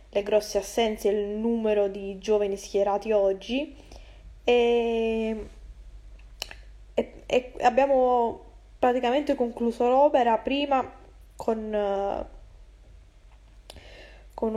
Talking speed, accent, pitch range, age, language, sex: 75 wpm, native, 205-230 Hz, 10-29, Italian, female